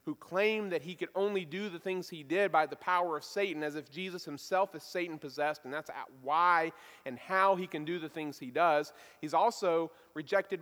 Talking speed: 215 wpm